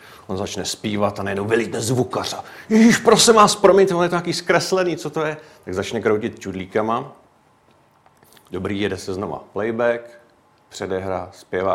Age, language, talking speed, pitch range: 40-59, Czech, 155 wpm, 105-140 Hz